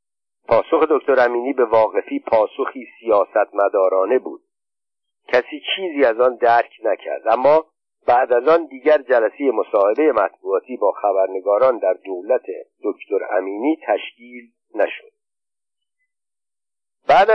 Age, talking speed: 50-69, 105 wpm